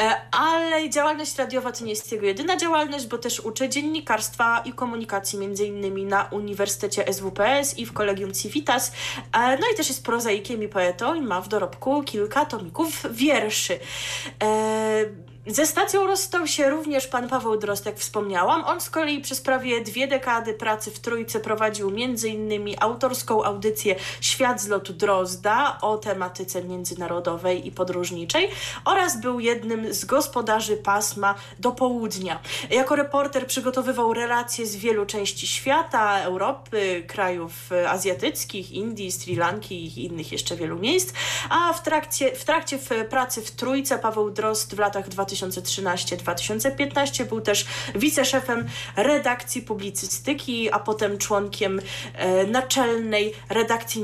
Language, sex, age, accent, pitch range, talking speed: Polish, female, 20-39, native, 195-260 Hz, 135 wpm